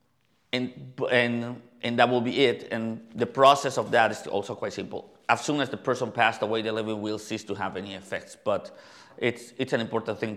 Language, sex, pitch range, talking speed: English, male, 105-125 Hz, 215 wpm